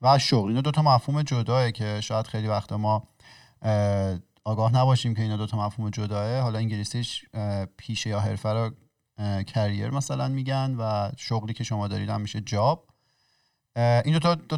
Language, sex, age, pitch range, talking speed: Persian, male, 30-49, 110-135 Hz, 160 wpm